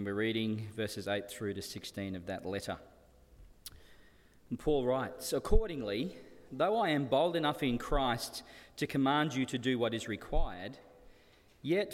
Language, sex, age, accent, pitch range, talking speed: English, male, 40-59, Australian, 115-165 Hz, 150 wpm